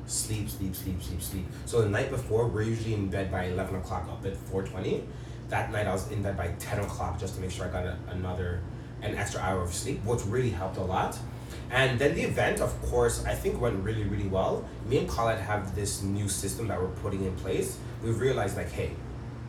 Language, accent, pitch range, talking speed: English, American, 95-115 Hz, 230 wpm